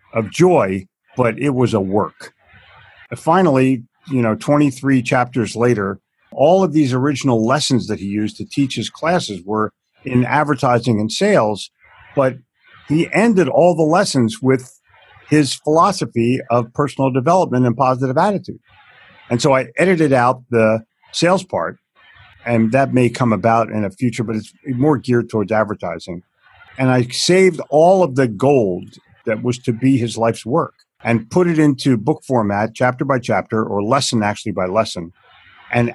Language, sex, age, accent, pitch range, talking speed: English, male, 50-69, American, 115-145 Hz, 160 wpm